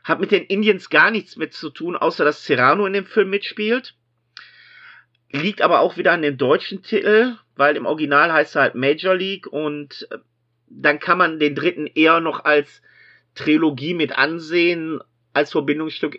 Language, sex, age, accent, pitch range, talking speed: German, male, 50-69, German, 135-195 Hz, 170 wpm